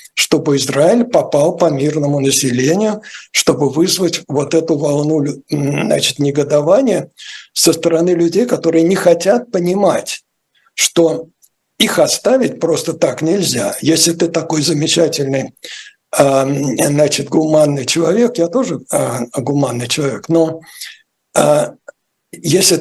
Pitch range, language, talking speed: 145-175 Hz, Russian, 105 wpm